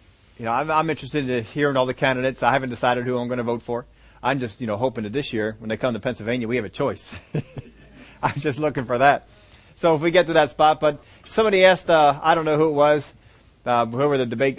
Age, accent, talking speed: 30-49, American, 255 wpm